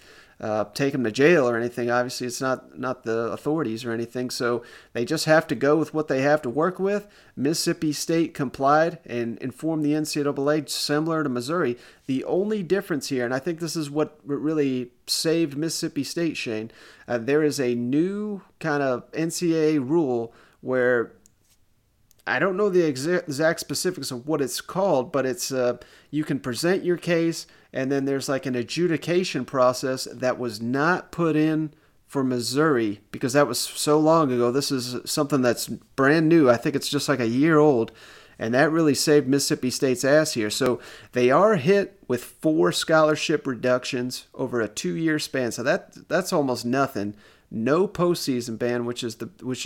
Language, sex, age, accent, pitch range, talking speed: English, male, 30-49, American, 125-155 Hz, 175 wpm